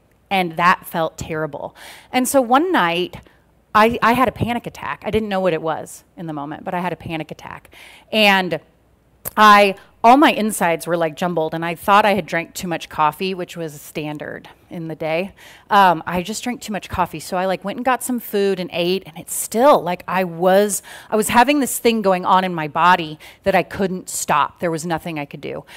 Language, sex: English, female